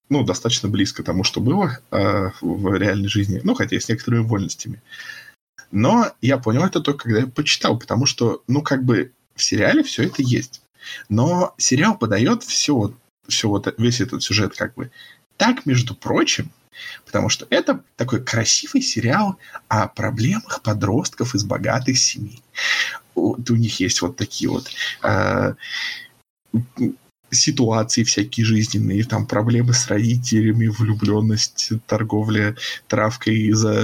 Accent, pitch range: native, 105-125 Hz